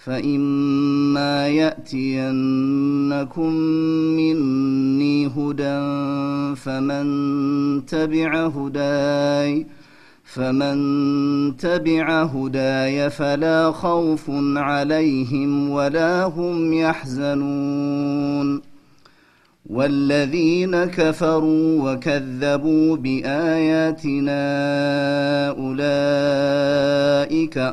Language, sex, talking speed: Amharic, male, 50 wpm